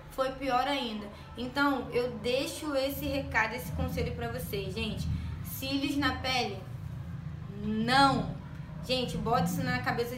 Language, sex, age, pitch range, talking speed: Portuguese, female, 20-39, 230-270 Hz, 130 wpm